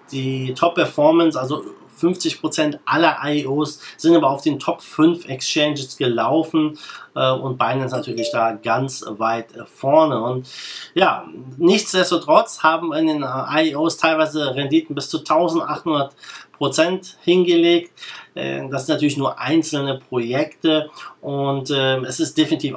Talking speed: 110 wpm